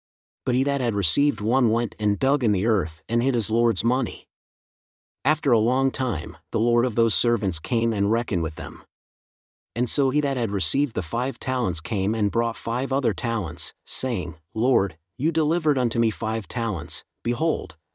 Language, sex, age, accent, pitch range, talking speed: English, male, 40-59, American, 95-130 Hz, 185 wpm